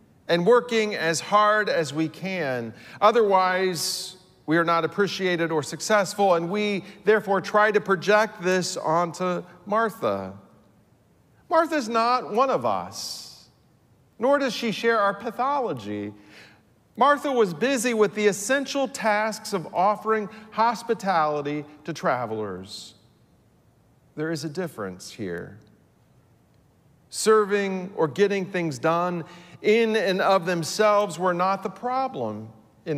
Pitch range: 165-220 Hz